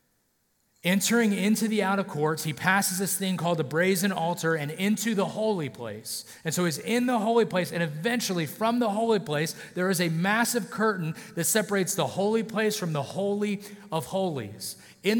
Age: 30-49